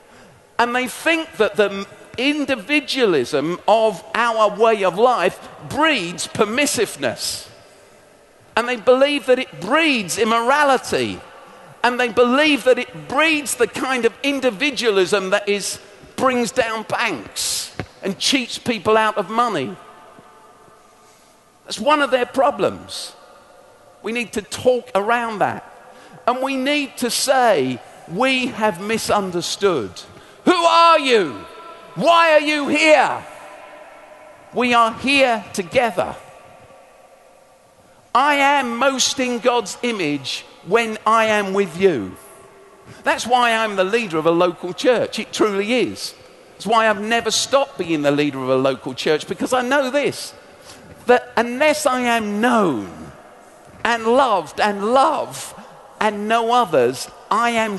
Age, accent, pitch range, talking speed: 50-69, British, 210-275 Hz, 130 wpm